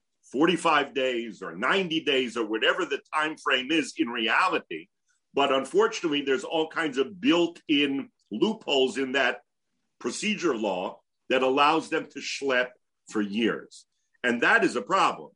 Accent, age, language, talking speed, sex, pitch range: American, 50-69, English, 145 wpm, male, 105-145 Hz